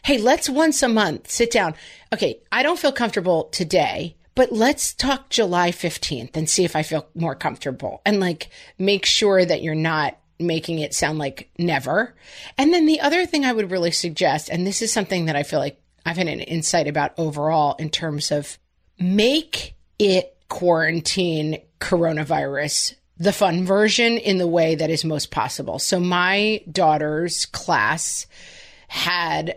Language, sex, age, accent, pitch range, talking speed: English, female, 40-59, American, 160-215 Hz, 165 wpm